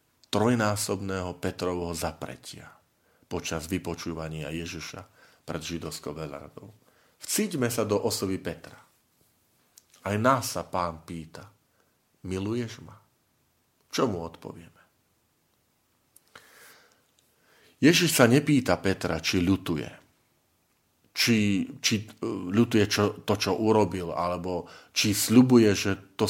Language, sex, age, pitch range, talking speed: Slovak, male, 40-59, 90-120 Hz, 95 wpm